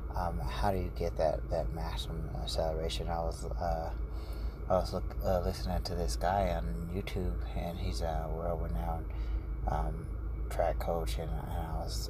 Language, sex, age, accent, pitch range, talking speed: English, male, 30-49, American, 80-90 Hz, 170 wpm